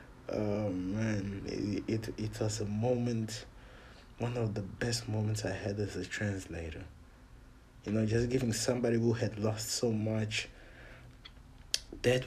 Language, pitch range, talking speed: English, 110-135 Hz, 140 wpm